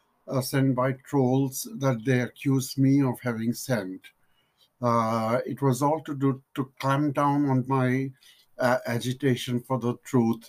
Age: 60-79